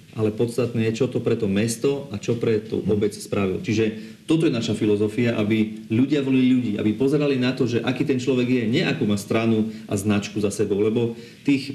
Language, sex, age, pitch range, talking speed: Slovak, male, 40-59, 110-140 Hz, 215 wpm